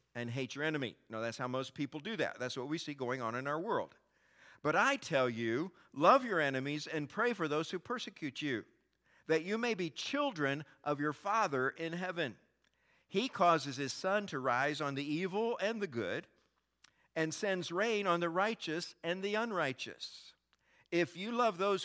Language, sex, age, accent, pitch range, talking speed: English, male, 50-69, American, 125-175 Hz, 190 wpm